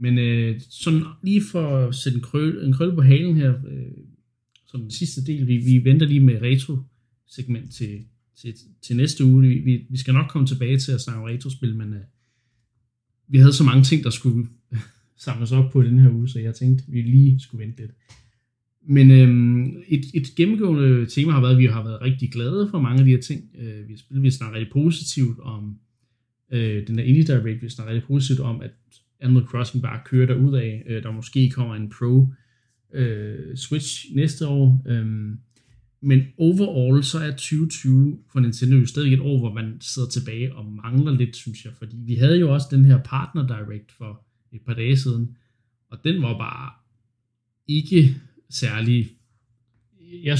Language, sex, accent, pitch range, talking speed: Danish, male, native, 120-135 Hz, 195 wpm